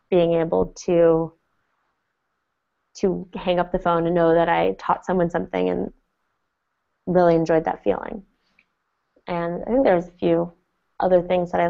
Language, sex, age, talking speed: English, female, 20-39, 160 wpm